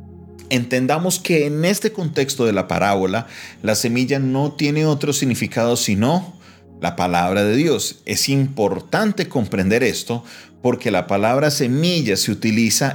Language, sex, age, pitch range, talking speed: Spanish, male, 40-59, 105-145 Hz, 135 wpm